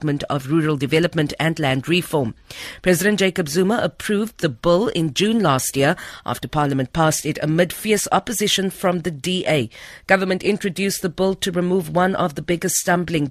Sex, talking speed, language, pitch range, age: female, 165 wpm, English, 150-200 Hz, 50-69